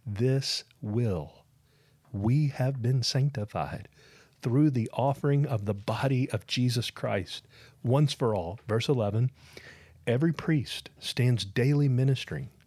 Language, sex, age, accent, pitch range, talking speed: English, male, 40-59, American, 105-140 Hz, 120 wpm